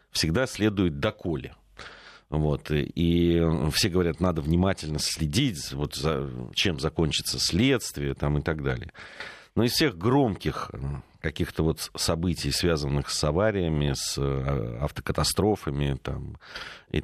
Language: Russian